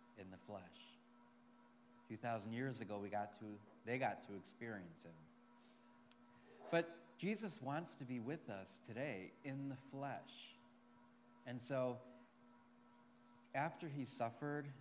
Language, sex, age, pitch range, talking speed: English, male, 40-59, 115-125 Hz, 130 wpm